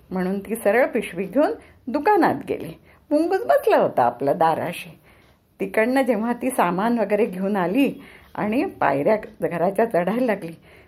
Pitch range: 210-305 Hz